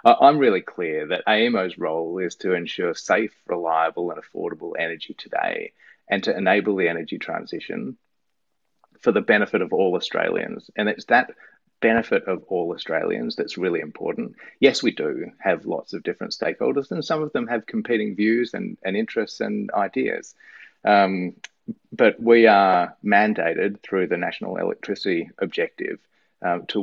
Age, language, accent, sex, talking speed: 30-49, English, Australian, male, 155 wpm